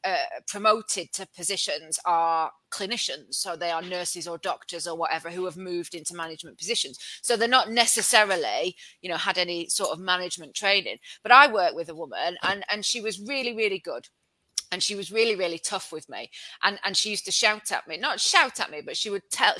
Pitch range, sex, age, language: 175-235 Hz, female, 30-49, English